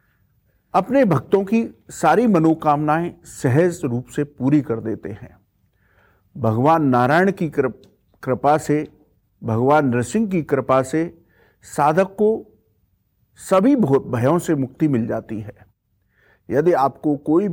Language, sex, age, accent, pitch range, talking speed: English, male, 50-69, Indian, 115-170 Hz, 120 wpm